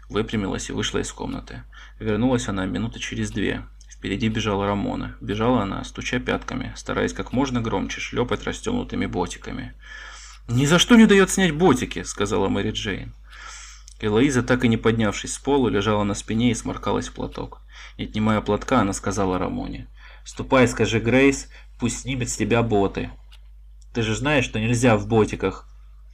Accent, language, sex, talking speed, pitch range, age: native, Russian, male, 160 wpm, 95-125 Hz, 20-39